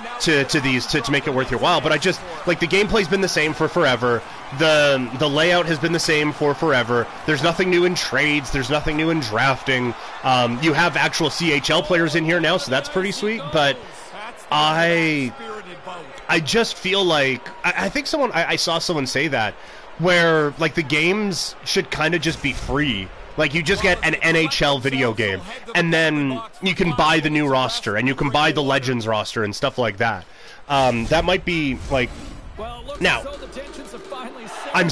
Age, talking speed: 30-49, 195 wpm